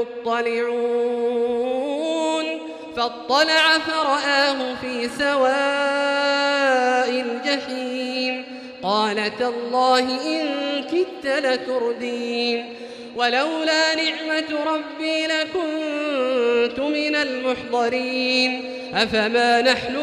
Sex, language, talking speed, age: male, Arabic, 55 wpm, 30-49